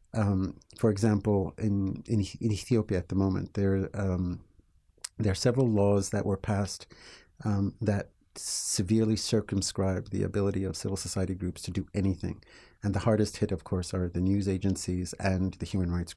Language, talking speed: English, 170 wpm